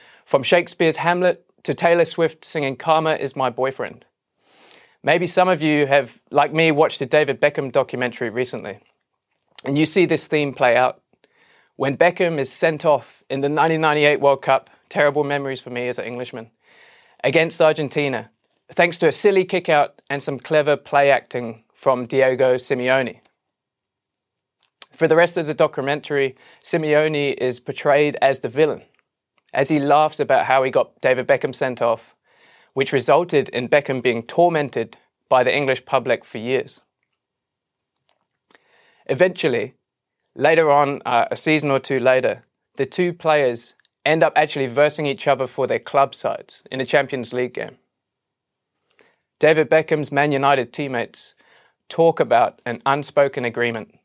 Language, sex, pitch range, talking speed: English, male, 130-155 Hz, 150 wpm